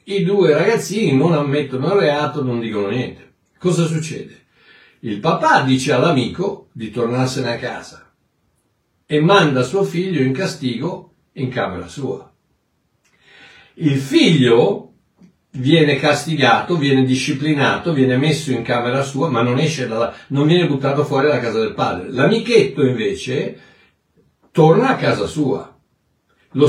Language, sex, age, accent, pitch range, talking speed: Italian, male, 60-79, native, 125-175 Hz, 135 wpm